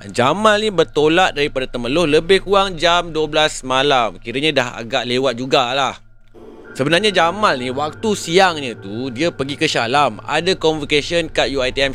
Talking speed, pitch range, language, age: 150 wpm, 130-180 Hz, Malay, 30-49